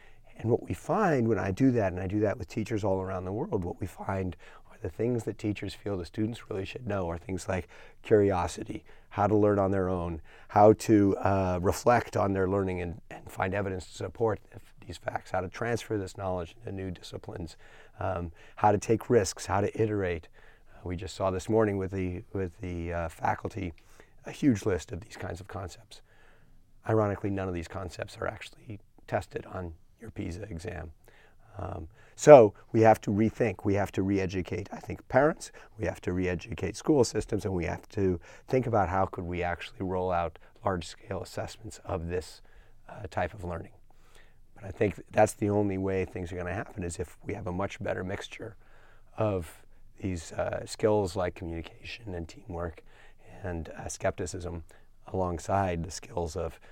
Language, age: Danish, 30-49